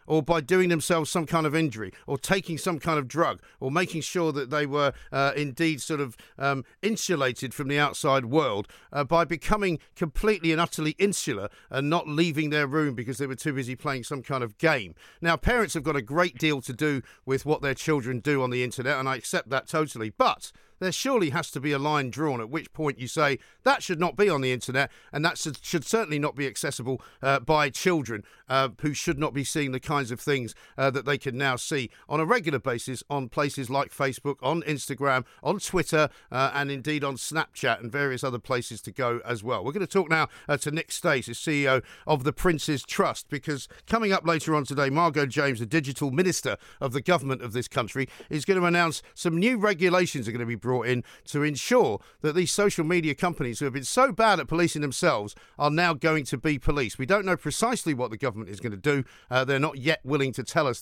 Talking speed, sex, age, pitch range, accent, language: 230 wpm, male, 50-69, 135-170 Hz, British, English